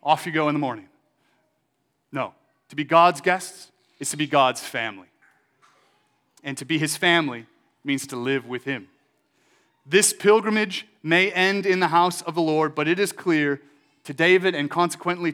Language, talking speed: English, 170 wpm